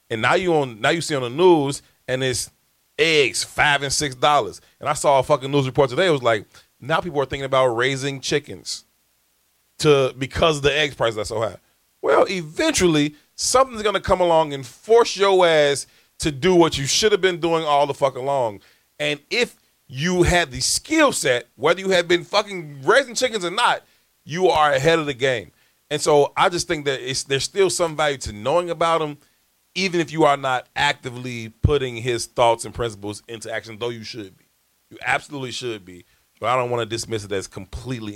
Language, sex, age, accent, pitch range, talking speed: English, male, 30-49, American, 115-165 Hz, 210 wpm